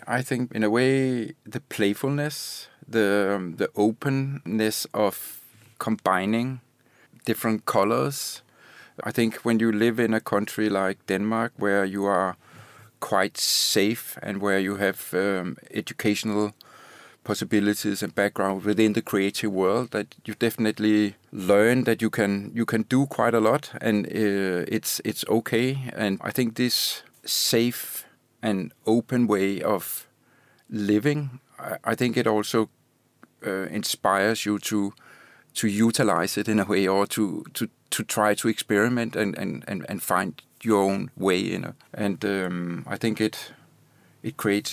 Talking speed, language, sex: 145 wpm, English, male